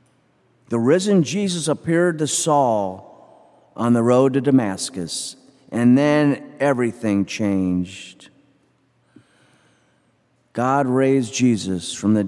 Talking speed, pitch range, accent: 100 wpm, 120-145 Hz, American